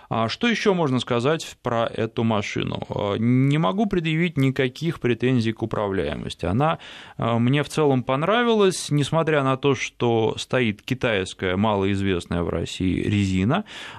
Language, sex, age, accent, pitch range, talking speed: Russian, male, 20-39, native, 105-135 Hz, 125 wpm